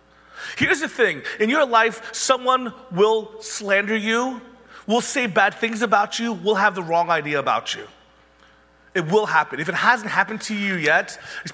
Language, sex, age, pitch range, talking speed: English, male, 30-49, 140-235 Hz, 175 wpm